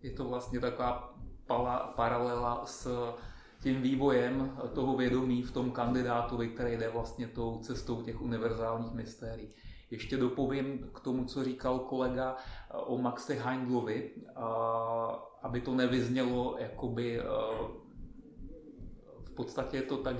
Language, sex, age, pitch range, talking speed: Czech, male, 30-49, 120-130 Hz, 120 wpm